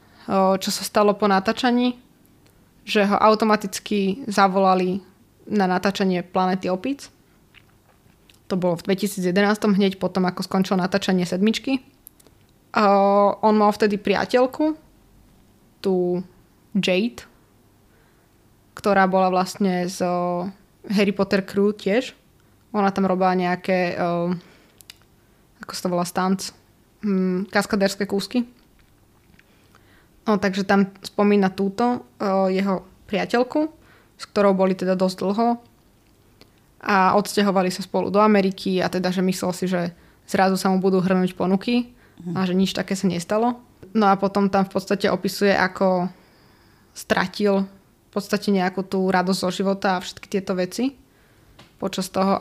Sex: female